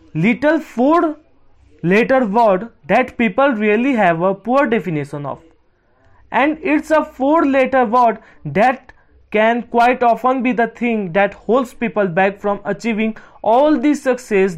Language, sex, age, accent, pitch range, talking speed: English, male, 20-39, Indian, 185-270 Hz, 140 wpm